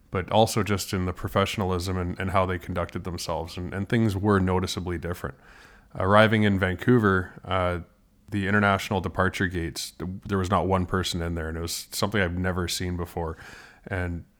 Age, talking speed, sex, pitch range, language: 20-39, 175 wpm, male, 90-100 Hz, English